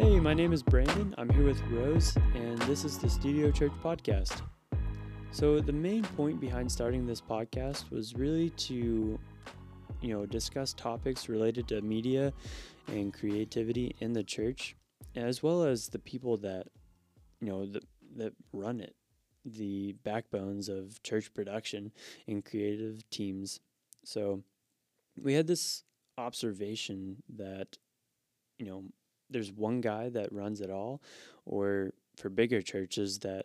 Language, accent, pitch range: English, American, 100-125 Hz